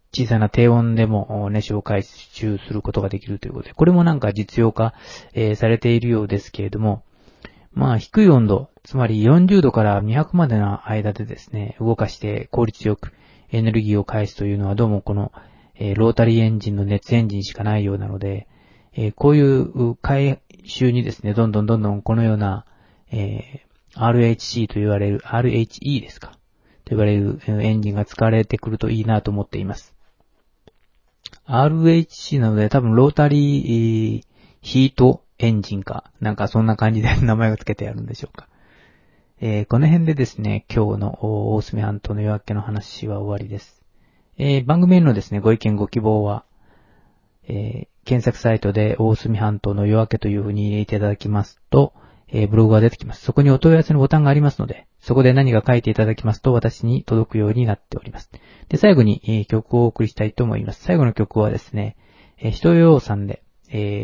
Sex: male